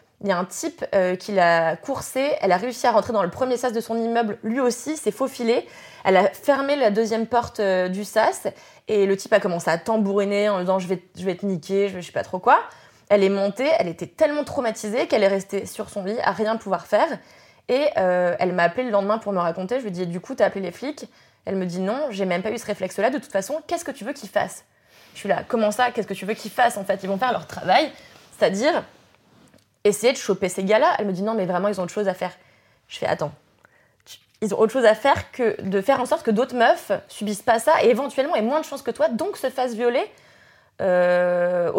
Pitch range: 190-245 Hz